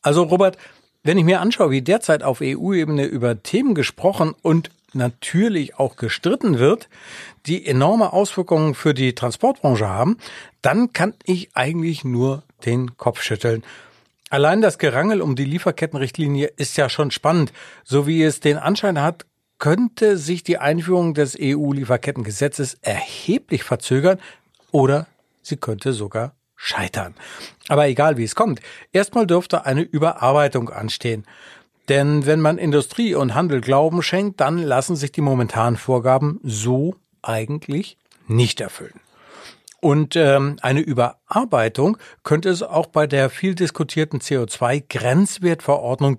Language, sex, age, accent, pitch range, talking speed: German, male, 60-79, German, 135-175 Hz, 135 wpm